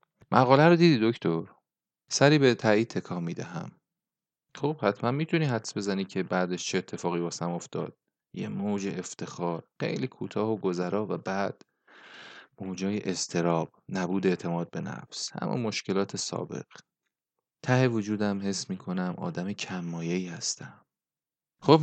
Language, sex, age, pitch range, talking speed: Persian, male, 30-49, 95-125 Hz, 125 wpm